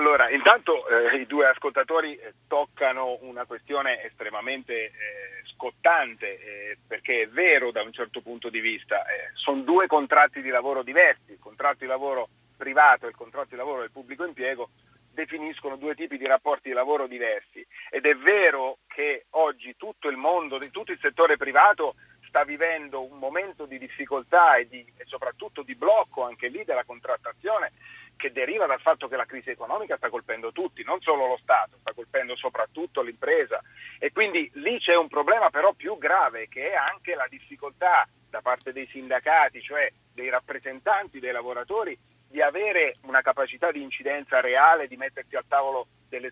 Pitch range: 130-215 Hz